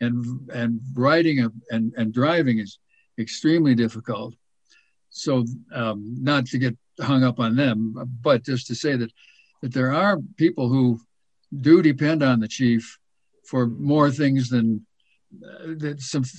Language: English